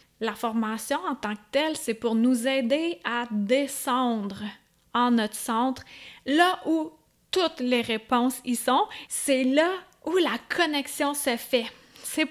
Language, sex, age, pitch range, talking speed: French, female, 30-49, 235-310 Hz, 145 wpm